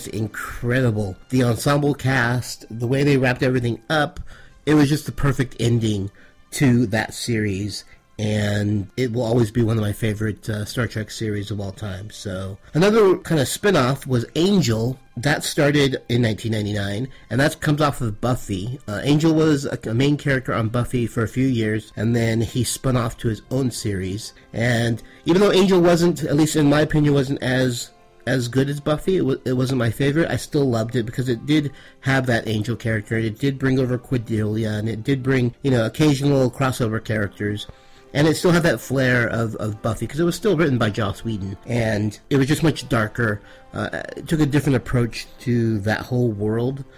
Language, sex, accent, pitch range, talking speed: English, male, American, 110-140 Hz, 200 wpm